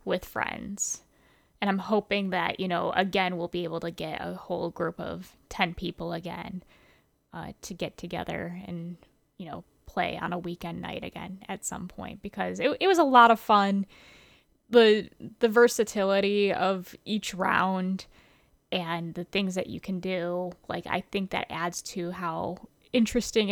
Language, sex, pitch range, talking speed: English, female, 180-215 Hz, 170 wpm